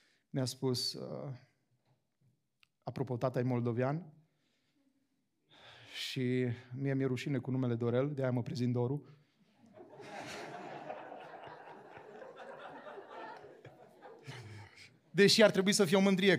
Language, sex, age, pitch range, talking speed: Romanian, male, 30-49, 120-155 Hz, 90 wpm